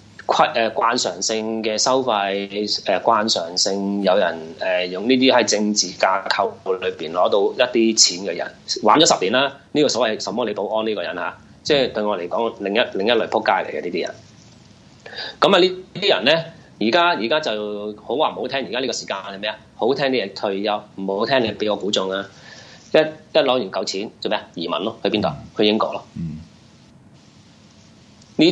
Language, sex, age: Chinese, male, 30-49